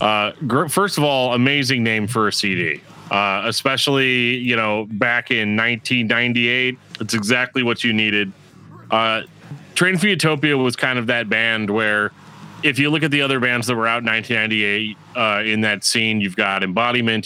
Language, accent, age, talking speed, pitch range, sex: English, American, 30-49, 175 wpm, 105-125 Hz, male